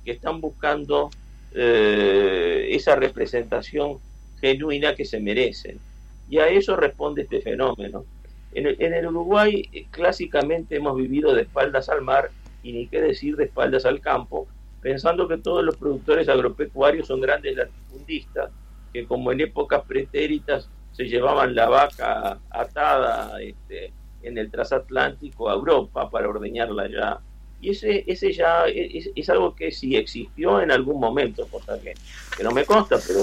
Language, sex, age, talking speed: Spanish, male, 50-69, 150 wpm